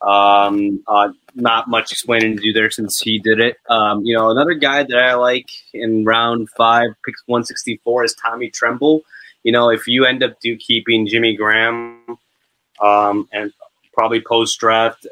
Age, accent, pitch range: 20-39, American, 105-120 Hz